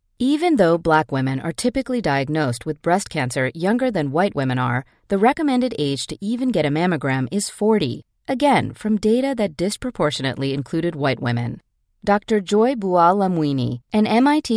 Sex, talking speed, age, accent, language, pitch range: female, 155 wpm, 40-59, American, English, 140-225 Hz